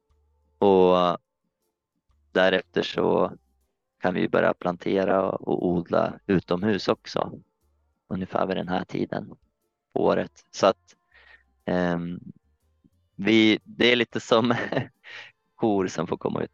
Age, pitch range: 20-39, 85-100 Hz